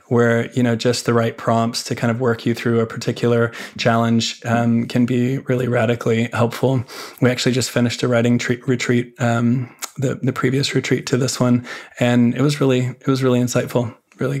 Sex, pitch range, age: male, 125-135 Hz, 20-39